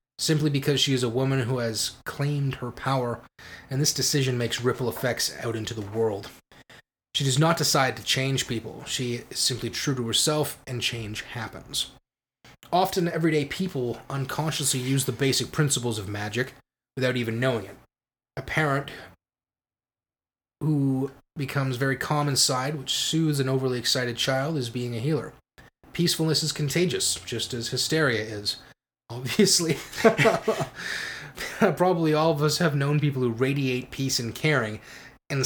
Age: 30-49